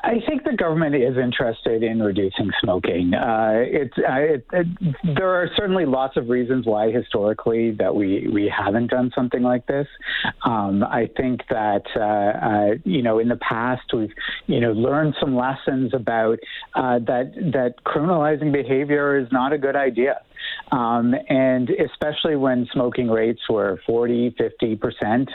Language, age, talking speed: English, 50-69, 160 wpm